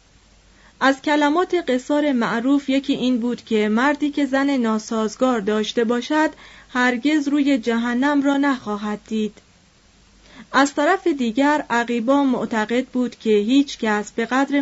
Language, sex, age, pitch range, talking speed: Persian, female, 30-49, 220-280 Hz, 125 wpm